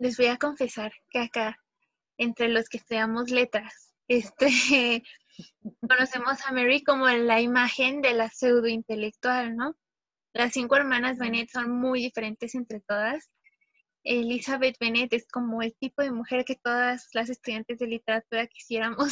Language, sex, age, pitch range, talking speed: Spanish, female, 20-39, 225-255 Hz, 145 wpm